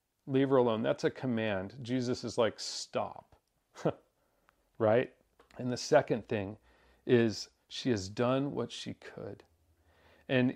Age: 40-59